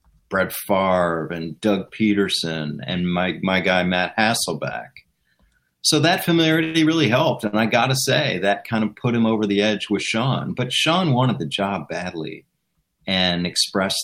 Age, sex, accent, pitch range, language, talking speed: 40-59, male, American, 95-130 Hz, English, 165 wpm